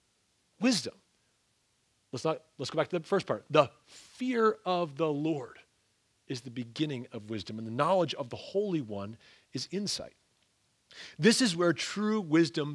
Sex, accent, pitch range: male, American, 135-180 Hz